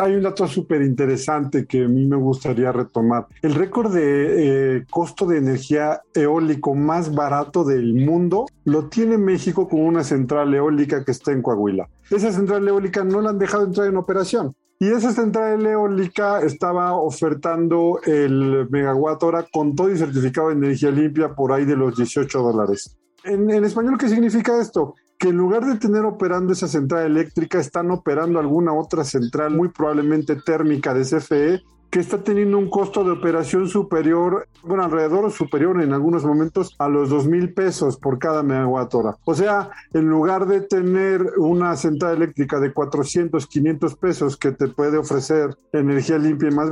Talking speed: 170 wpm